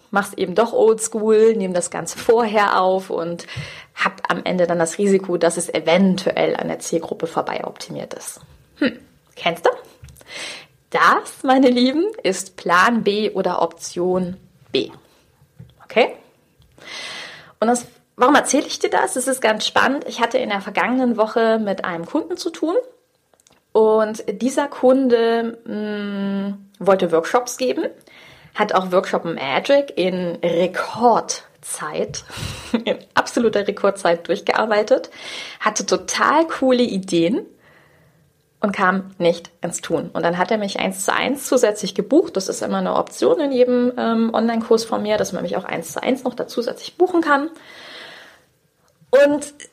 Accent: German